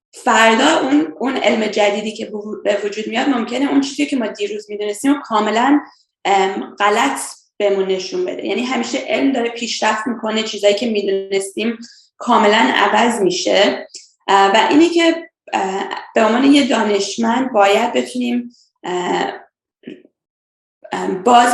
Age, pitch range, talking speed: 20-39, 205-255 Hz, 125 wpm